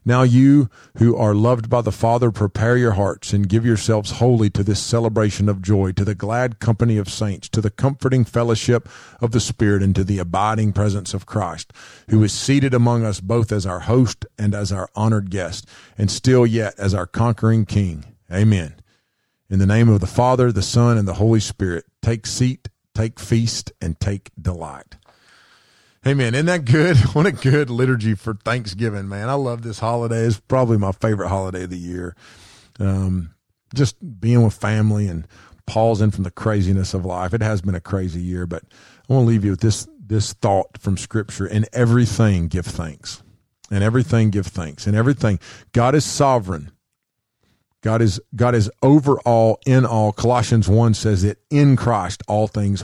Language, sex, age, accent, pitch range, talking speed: English, male, 40-59, American, 100-120 Hz, 185 wpm